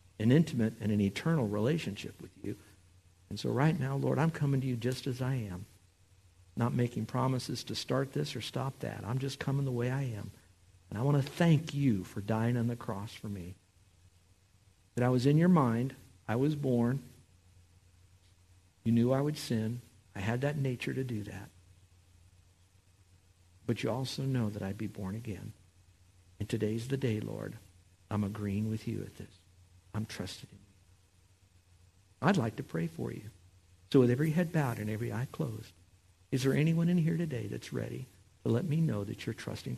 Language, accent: English, American